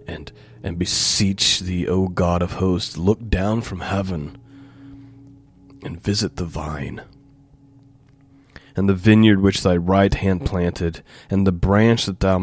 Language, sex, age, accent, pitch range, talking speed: English, male, 30-49, American, 85-115 Hz, 140 wpm